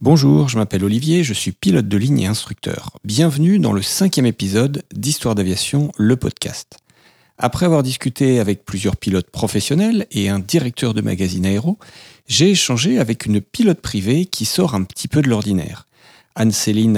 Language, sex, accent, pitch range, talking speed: French, male, French, 105-150 Hz, 165 wpm